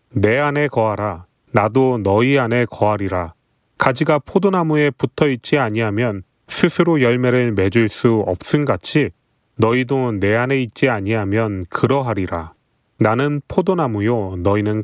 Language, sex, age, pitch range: Korean, male, 30-49, 105-135 Hz